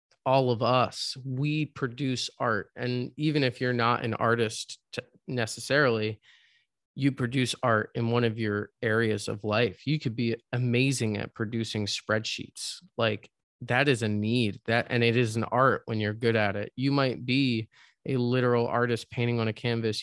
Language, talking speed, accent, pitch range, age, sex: English, 170 wpm, American, 110-125 Hz, 20-39, male